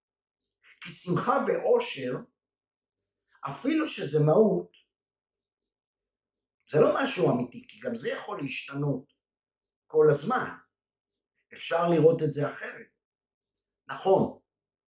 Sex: male